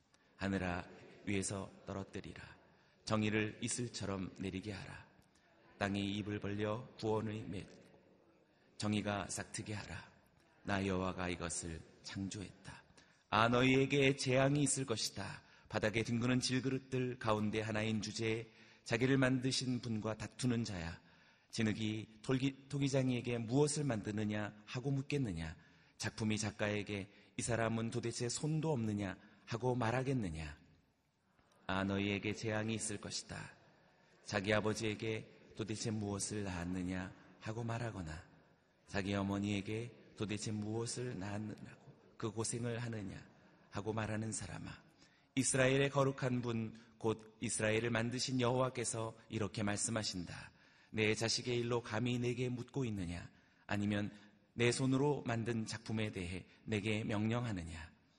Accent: native